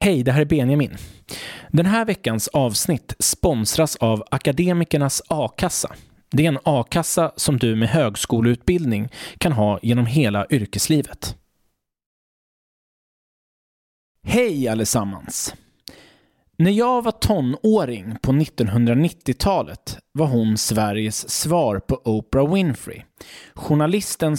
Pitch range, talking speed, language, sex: 115-165 Hz, 105 wpm, English, male